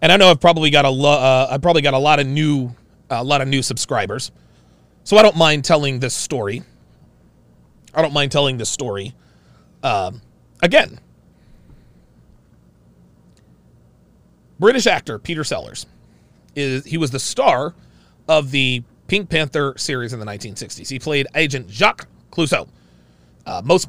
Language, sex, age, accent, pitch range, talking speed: English, male, 30-49, American, 120-165 Hz, 155 wpm